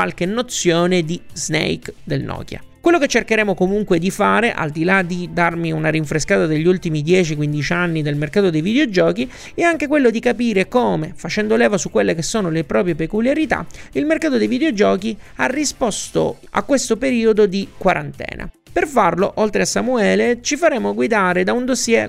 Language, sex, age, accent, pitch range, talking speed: Italian, male, 30-49, native, 165-245 Hz, 170 wpm